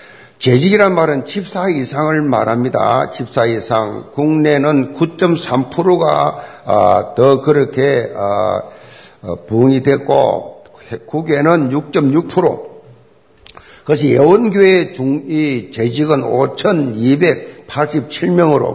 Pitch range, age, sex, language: 125-165 Hz, 50-69, male, Korean